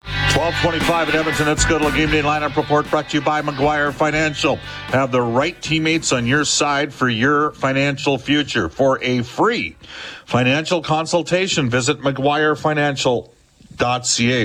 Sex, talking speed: male, 145 wpm